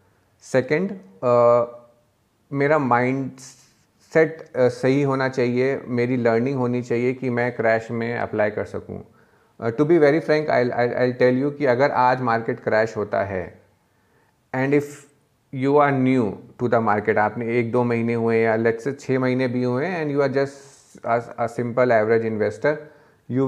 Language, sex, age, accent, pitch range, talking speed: Hindi, male, 30-49, native, 115-140 Hz, 165 wpm